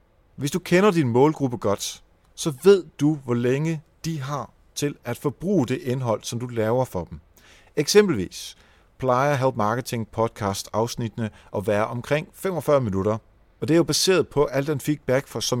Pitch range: 110-150 Hz